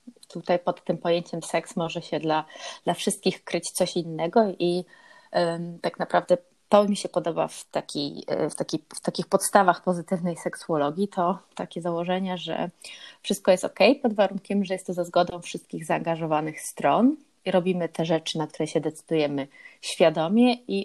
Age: 30-49